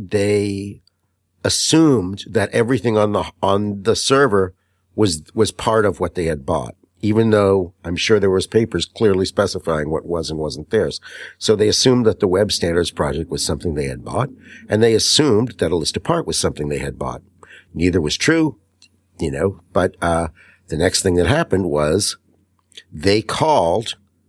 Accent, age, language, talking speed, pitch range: American, 50-69, English, 175 wpm, 90-110 Hz